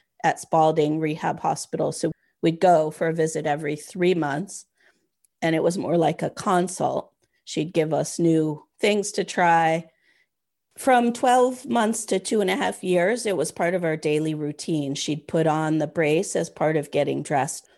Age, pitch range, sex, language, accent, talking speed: 30-49, 155-180 Hz, female, English, American, 180 wpm